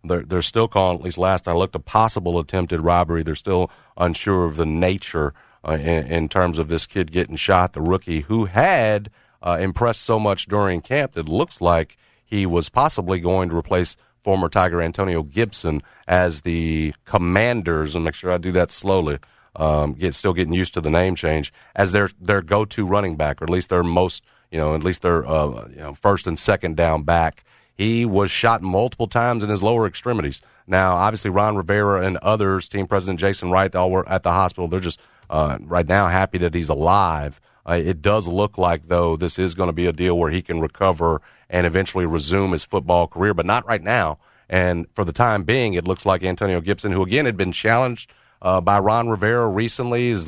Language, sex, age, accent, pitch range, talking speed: English, male, 40-59, American, 85-100 Hz, 210 wpm